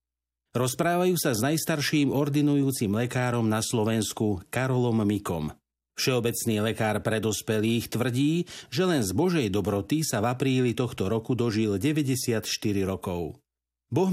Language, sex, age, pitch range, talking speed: Slovak, male, 50-69, 105-140 Hz, 120 wpm